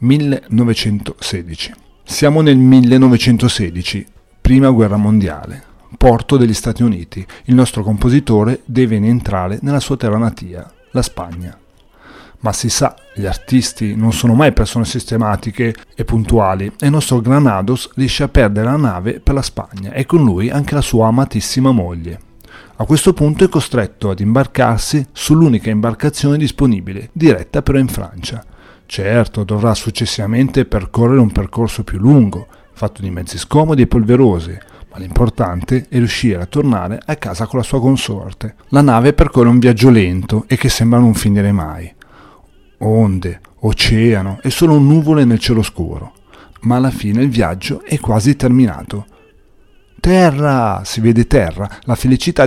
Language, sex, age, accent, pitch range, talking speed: Italian, male, 40-59, native, 100-130 Hz, 145 wpm